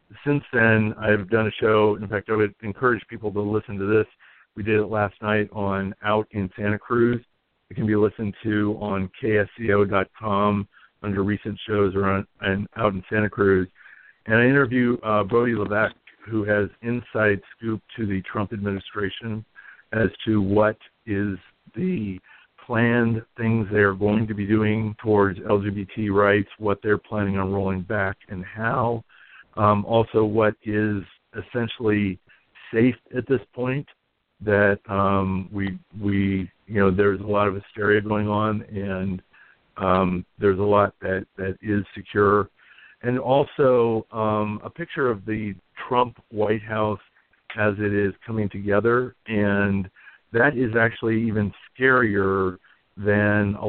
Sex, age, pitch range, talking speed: male, 50-69, 100-110 Hz, 150 wpm